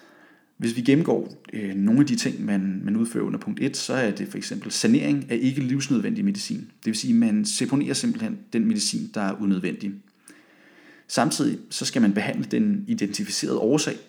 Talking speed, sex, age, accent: 185 wpm, male, 30-49, native